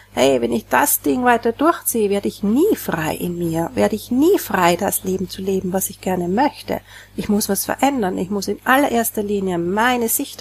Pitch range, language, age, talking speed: 195-250 Hz, German, 40-59, 210 wpm